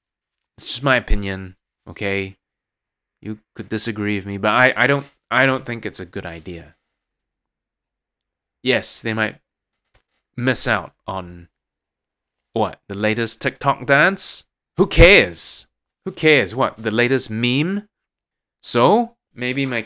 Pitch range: 100-150 Hz